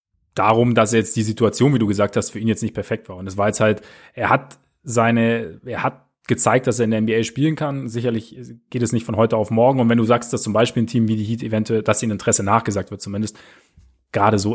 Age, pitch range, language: 30-49, 110-125 Hz, German